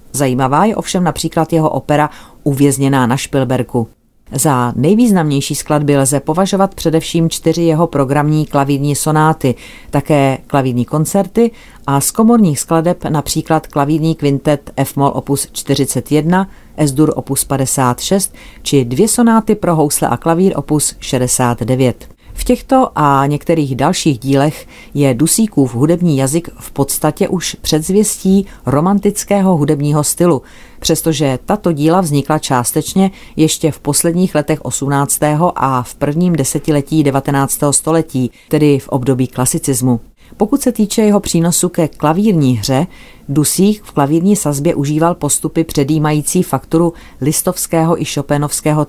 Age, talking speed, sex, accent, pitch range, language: 40-59, 125 wpm, female, native, 140-170 Hz, Czech